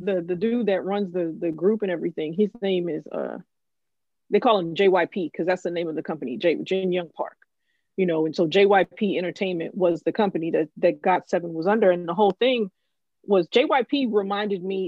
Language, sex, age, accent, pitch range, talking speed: English, female, 20-39, American, 185-210 Hz, 210 wpm